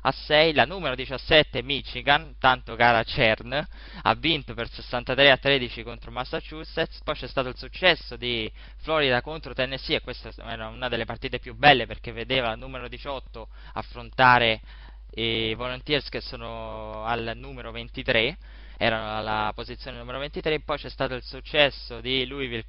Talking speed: 155 wpm